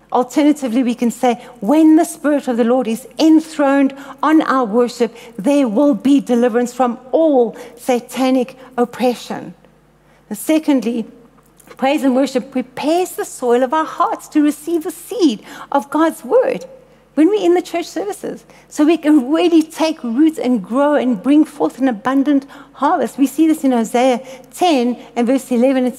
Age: 60-79